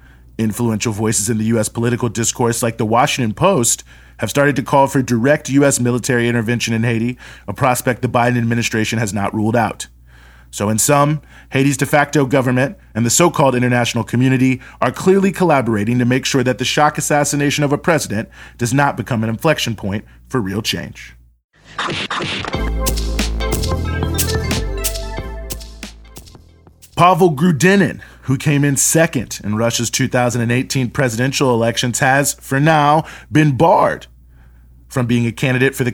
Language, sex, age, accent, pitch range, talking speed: English, male, 30-49, American, 105-135 Hz, 145 wpm